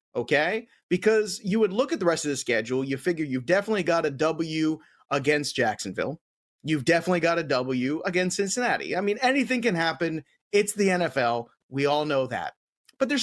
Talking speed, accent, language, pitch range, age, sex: 185 wpm, American, English, 150-215 Hz, 30-49, male